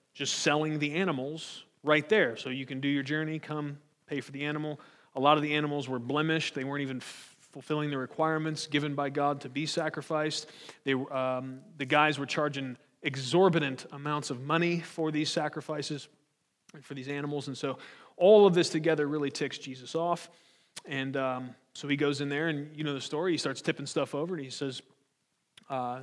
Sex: male